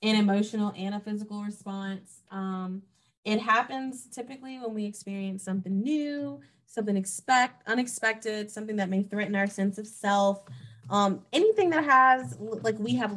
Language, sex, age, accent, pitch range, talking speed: English, female, 20-39, American, 190-225 Hz, 150 wpm